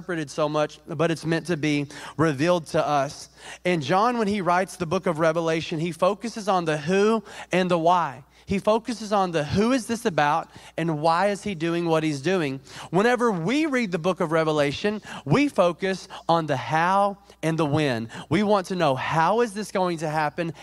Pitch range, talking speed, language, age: 145-180 Hz, 205 wpm, English, 30-49